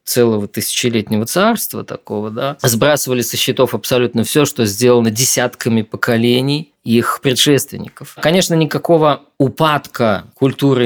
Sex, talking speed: male, 110 wpm